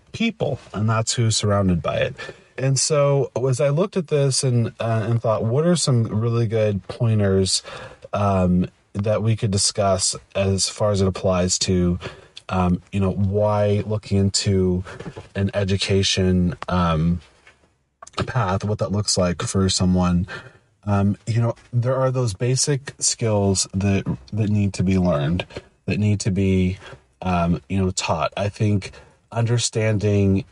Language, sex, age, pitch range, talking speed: English, male, 30-49, 95-115 Hz, 150 wpm